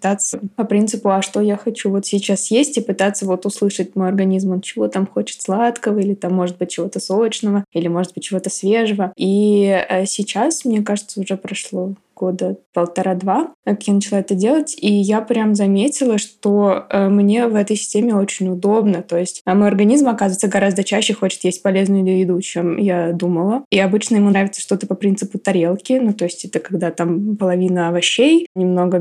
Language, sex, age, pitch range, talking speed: Russian, female, 20-39, 190-220 Hz, 175 wpm